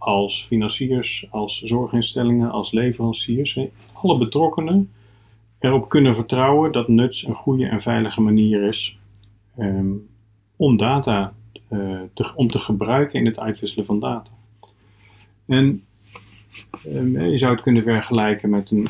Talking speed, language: 120 wpm, Dutch